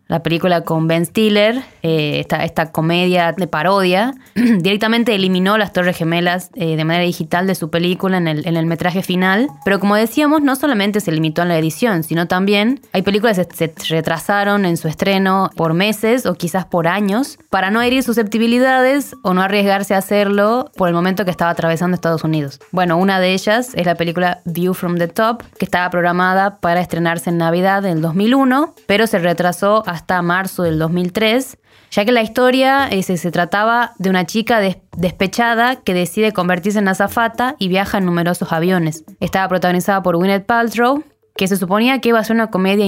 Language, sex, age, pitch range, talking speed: Spanish, female, 20-39, 170-215 Hz, 190 wpm